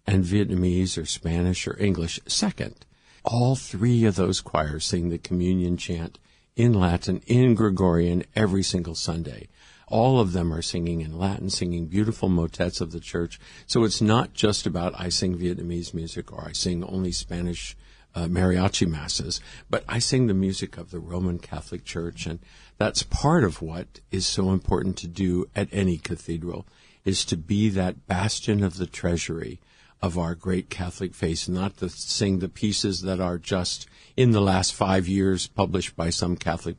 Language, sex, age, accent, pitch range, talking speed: English, male, 50-69, American, 85-100 Hz, 175 wpm